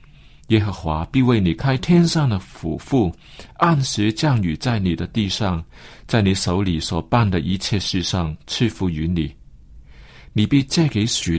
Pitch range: 90-130 Hz